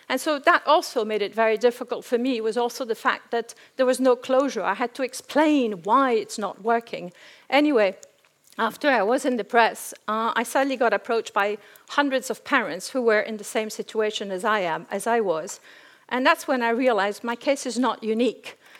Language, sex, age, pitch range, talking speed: English, female, 50-69, 215-255 Hz, 210 wpm